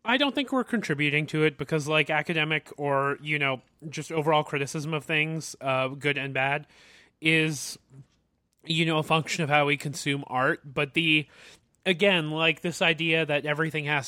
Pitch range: 135-160 Hz